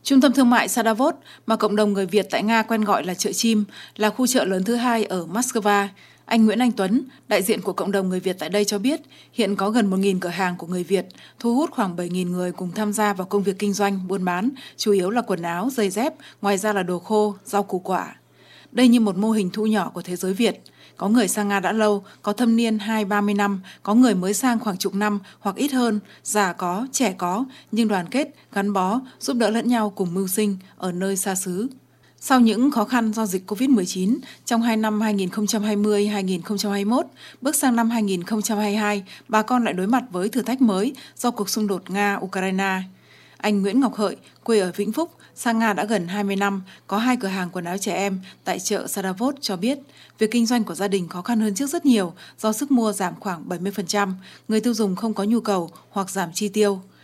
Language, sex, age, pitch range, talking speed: Vietnamese, female, 20-39, 195-230 Hz, 225 wpm